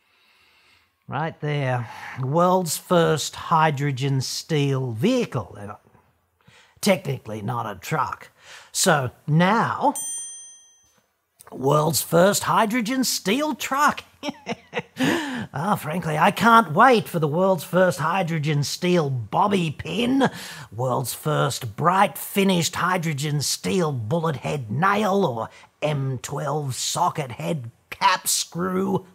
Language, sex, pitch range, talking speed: English, male, 135-185 Hz, 95 wpm